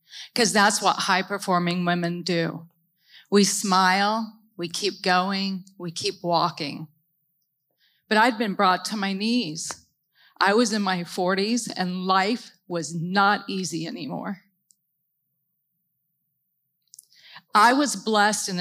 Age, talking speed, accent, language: 40-59, 115 wpm, American, English